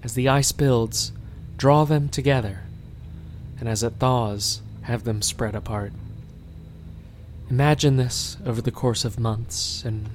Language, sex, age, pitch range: English, male, 30-49, 100-120 Hz